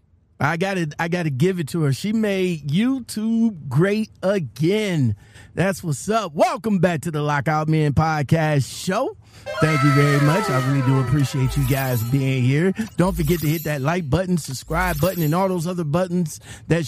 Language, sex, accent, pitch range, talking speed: English, male, American, 130-190 Hz, 185 wpm